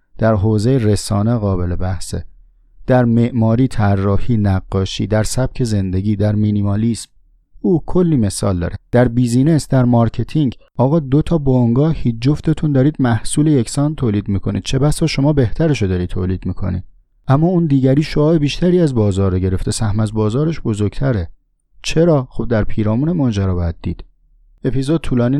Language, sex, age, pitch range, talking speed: Persian, male, 30-49, 95-125 Hz, 145 wpm